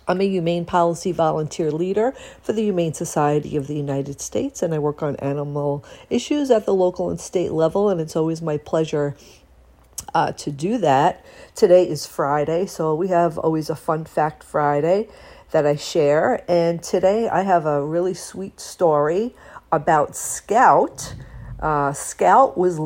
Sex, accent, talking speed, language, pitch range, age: female, American, 165 wpm, English, 155-205 Hz, 50-69